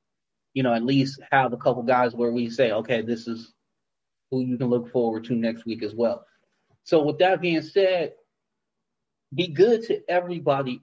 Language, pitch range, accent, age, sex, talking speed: English, 130-175 Hz, American, 30-49, male, 185 wpm